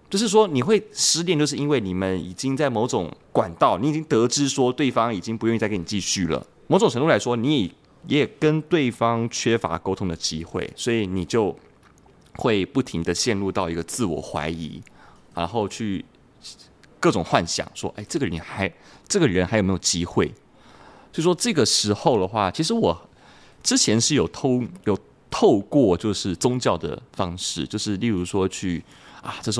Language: Chinese